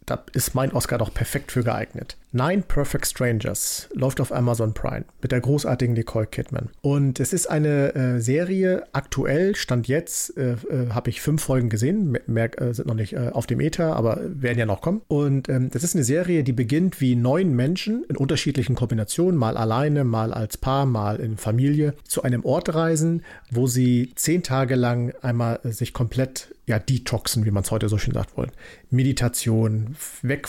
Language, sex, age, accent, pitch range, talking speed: German, male, 50-69, German, 120-145 Hz, 190 wpm